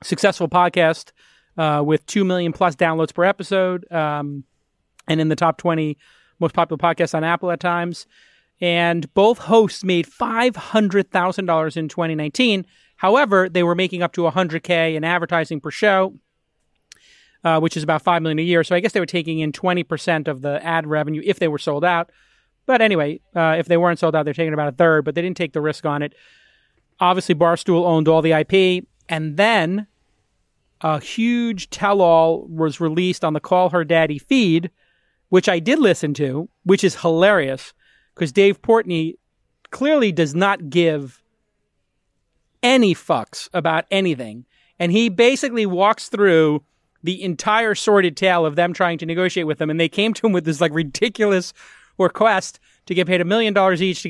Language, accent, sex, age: English, American, male, 30-49